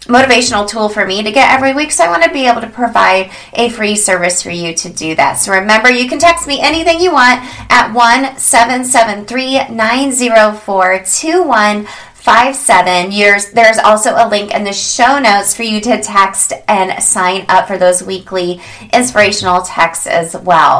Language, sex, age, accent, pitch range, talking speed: English, female, 30-49, American, 185-245 Hz, 175 wpm